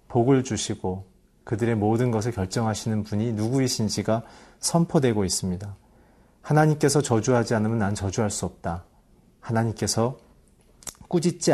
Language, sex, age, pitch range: Korean, male, 40-59, 100-130 Hz